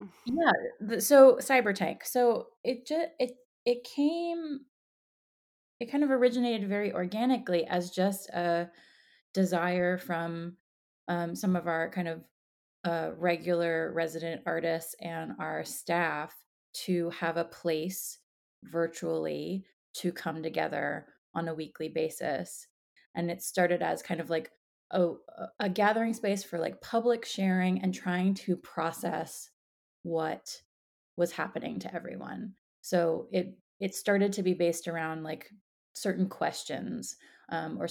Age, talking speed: 20-39, 130 wpm